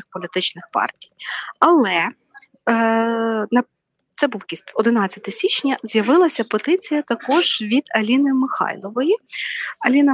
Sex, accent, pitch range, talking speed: female, native, 195-260 Hz, 95 wpm